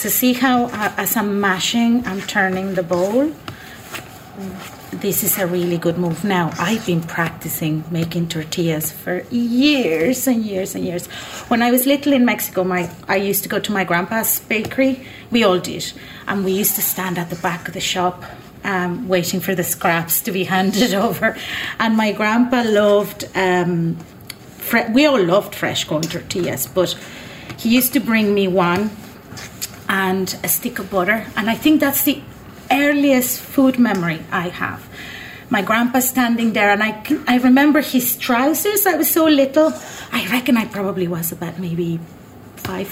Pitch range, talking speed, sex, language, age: 180-245 Hz, 170 wpm, female, English, 30-49